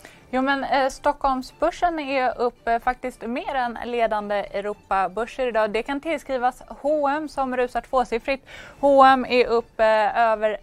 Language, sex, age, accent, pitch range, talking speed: English, female, 20-39, Swedish, 215-265 Hz, 125 wpm